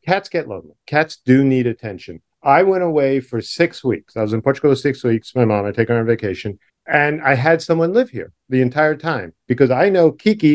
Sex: male